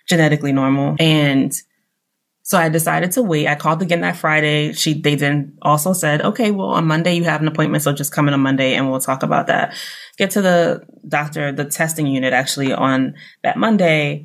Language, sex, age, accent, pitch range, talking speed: English, female, 20-39, American, 145-175 Hz, 200 wpm